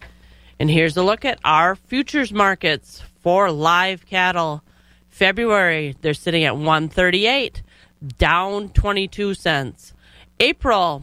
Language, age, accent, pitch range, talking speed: English, 40-59, American, 155-205 Hz, 110 wpm